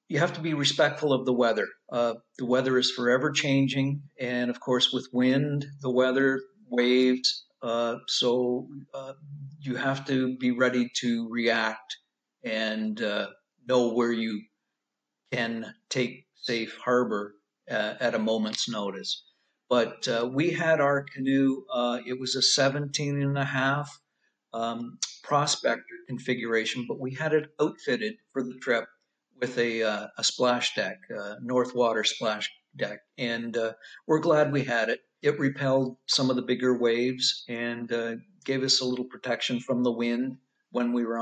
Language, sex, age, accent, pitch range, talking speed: English, male, 50-69, American, 120-140 Hz, 160 wpm